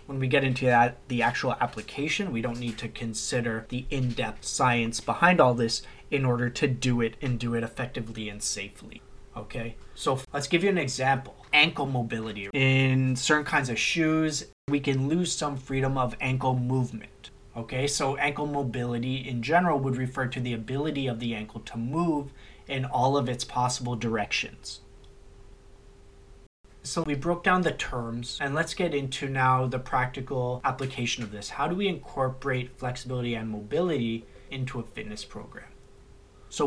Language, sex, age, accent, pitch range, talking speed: English, male, 30-49, American, 120-145 Hz, 170 wpm